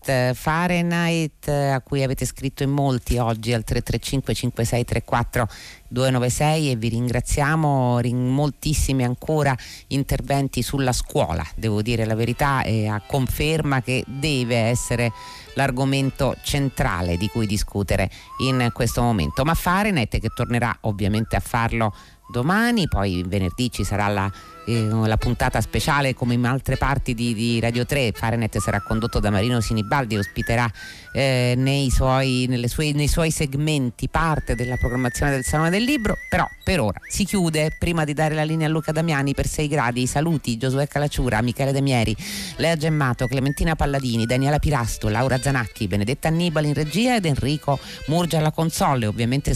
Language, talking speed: Italian, 155 wpm